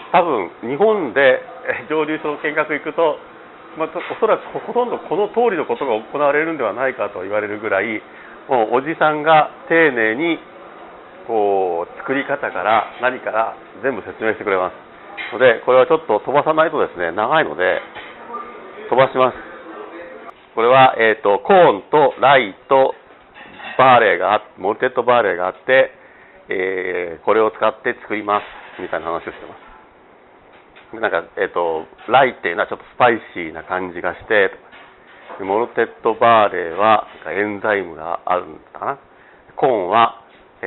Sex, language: male, Japanese